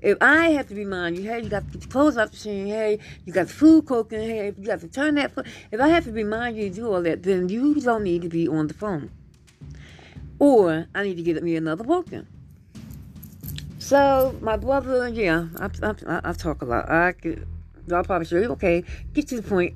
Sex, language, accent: female, English, American